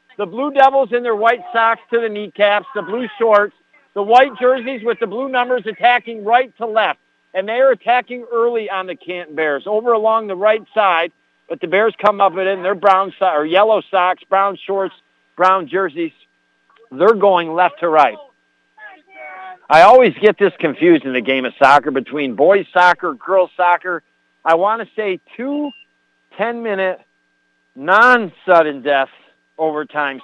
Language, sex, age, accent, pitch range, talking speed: English, male, 60-79, American, 160-225 Hz, 165 wpm